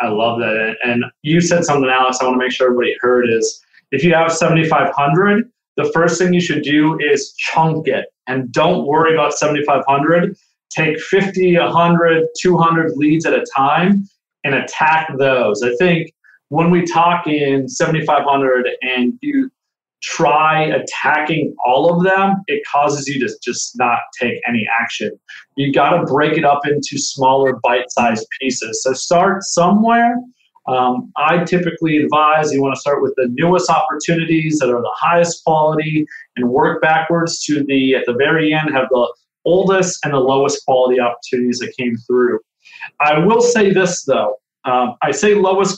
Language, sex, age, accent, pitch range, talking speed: English, male, 30-49, American, 135-175 Hz, 165 wpm